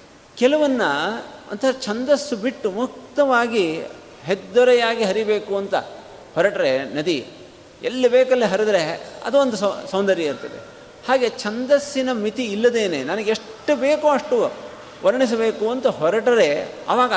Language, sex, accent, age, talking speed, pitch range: Kannada, male, native, 50-69, 105 wpm, 160-235 Hz